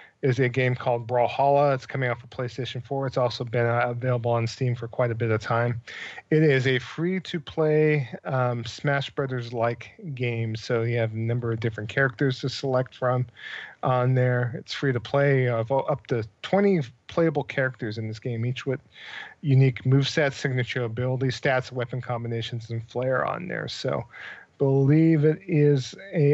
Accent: American